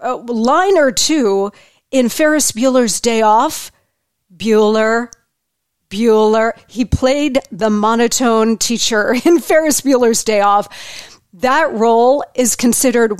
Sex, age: female, 40-59